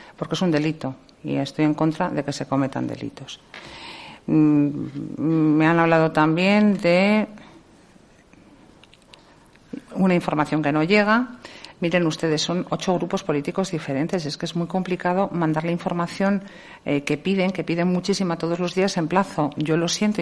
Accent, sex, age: Spanish, female, 50-69